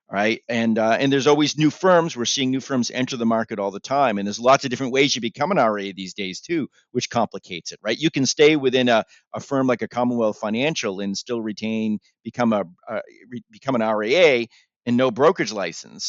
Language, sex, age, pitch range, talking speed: English, male, 50-69, 110-130 Hz, 225 wpm